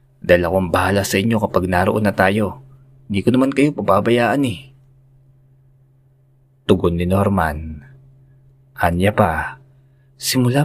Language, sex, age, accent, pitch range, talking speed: Filipino, male, 20-39, native, 90-135 Hz, 115 wpm